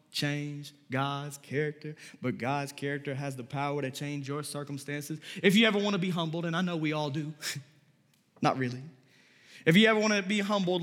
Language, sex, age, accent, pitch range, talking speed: English, male, 20-39, American, 150-215 Hz, 195 wpm